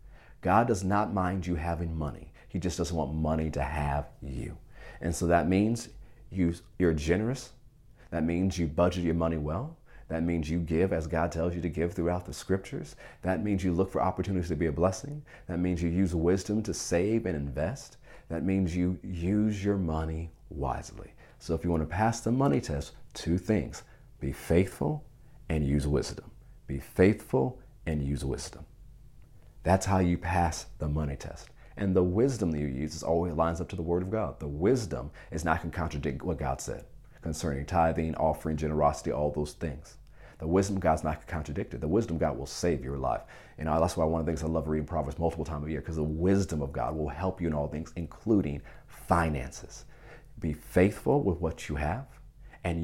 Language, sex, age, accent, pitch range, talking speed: English, male, 40-59, American, 80-100 Hz, 205 wpm